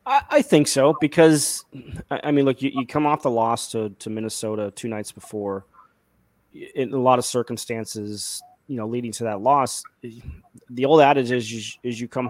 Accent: American